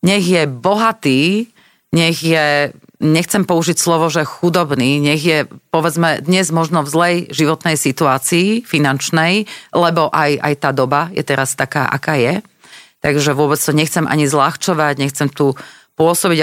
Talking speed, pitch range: 140 wpm, 145-170 Hz